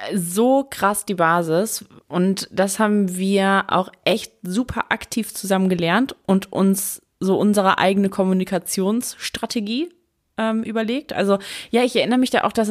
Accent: German